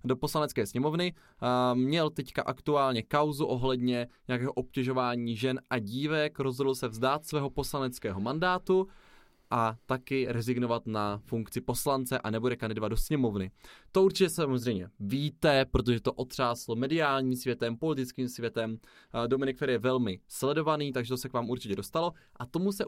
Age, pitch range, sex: 20-39, 120-150 Hz, male